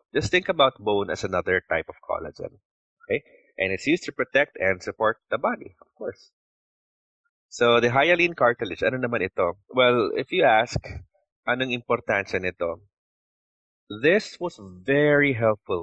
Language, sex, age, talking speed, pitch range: English, male, 20-39, 150 wpm, 95-155 Hz